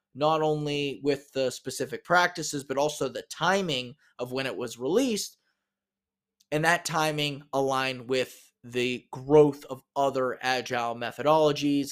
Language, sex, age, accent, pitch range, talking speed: English, male, 20-39, American, 125-155 Hz, 130 wpm